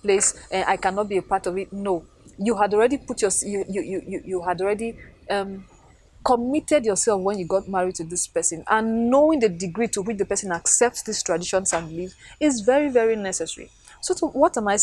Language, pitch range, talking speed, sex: English, 190-235 Hz, 210 wpm, female